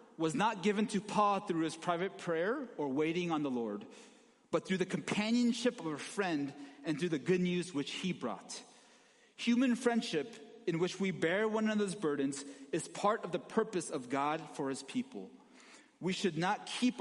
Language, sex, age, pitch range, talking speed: English, male, 30-49, 165-240 Hz, 185 wpm